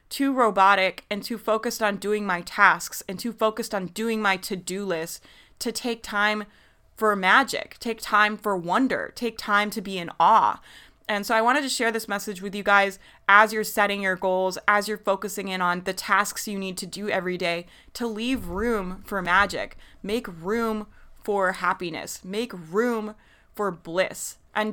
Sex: female